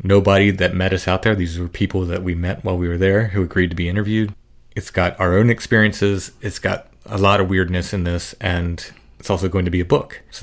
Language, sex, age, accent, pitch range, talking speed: English, male, 30-49, American, 90-105 Hz, 245 wpm